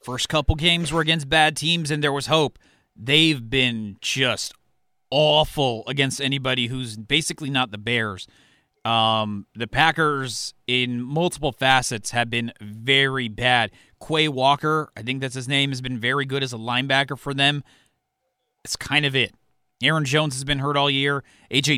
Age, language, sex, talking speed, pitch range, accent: 30-49, English, male, 165 wpm, 125-155 Hz, American